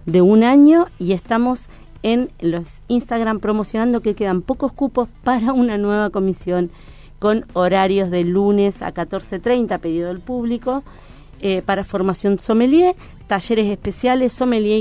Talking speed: 135 wpm